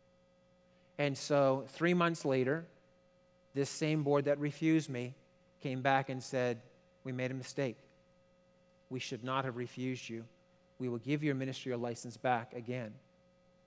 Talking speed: 150 wpm